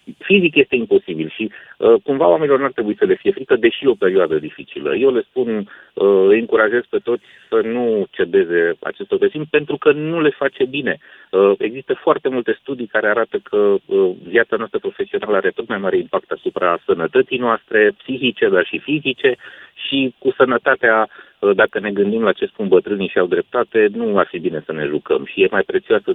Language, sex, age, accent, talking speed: Romanian, male, 30-49, native, 200 wpm